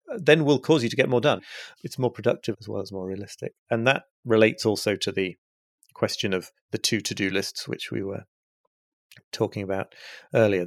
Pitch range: 105-130 Hz